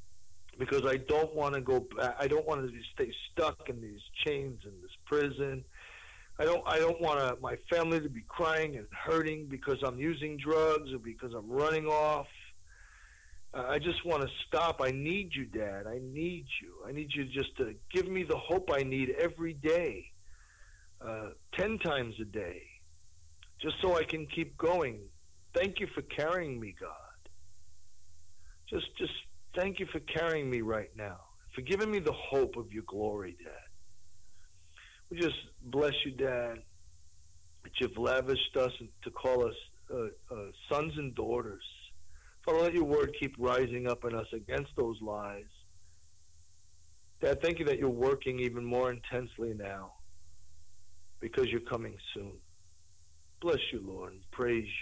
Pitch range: 90-150 Hz